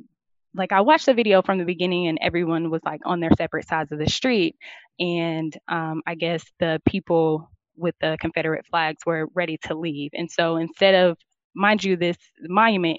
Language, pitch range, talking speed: English, 160-180 Hz, 190 wpm